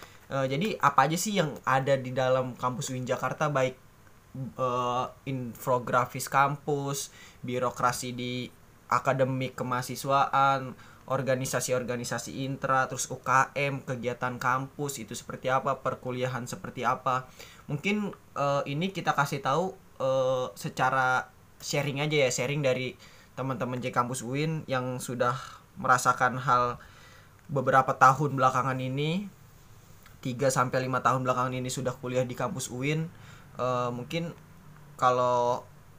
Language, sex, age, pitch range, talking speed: Indonesian, male, 20-39, 125-140 Hz, 115 wpm